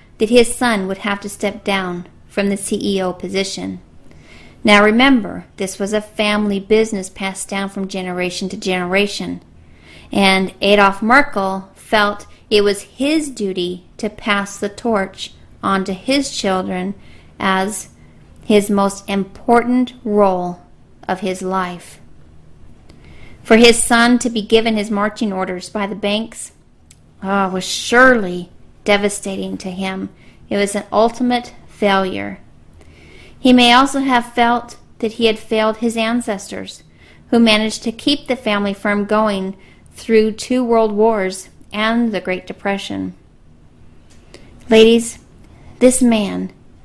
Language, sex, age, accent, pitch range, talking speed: English, female, 40-59, American, 185-225 Hz, 130 wpm